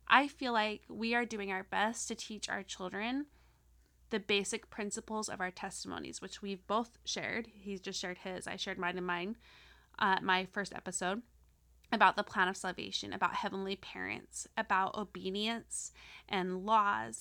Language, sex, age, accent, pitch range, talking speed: English, female, 20-39, American, 190-225 Hz, 165 wpm